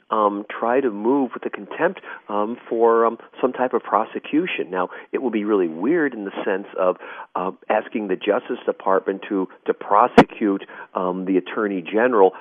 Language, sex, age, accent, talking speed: English, male, 40-59, American, 175 wpm